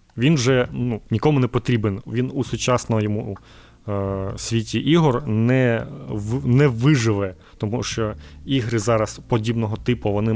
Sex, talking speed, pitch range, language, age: male, 140 wpm, 110-130 Hz, Ukrainian, 30-49